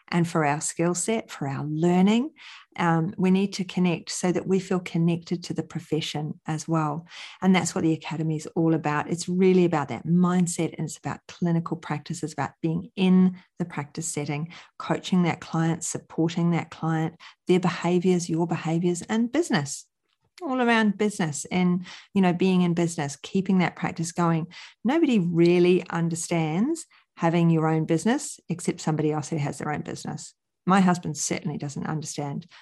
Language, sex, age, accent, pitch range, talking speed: English, female, 40-59, Australian, 160-195 Hz, 170 wpm